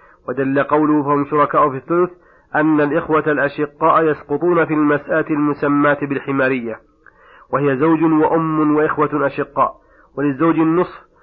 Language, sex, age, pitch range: Arabic, male, 40-59, 145-160 Hz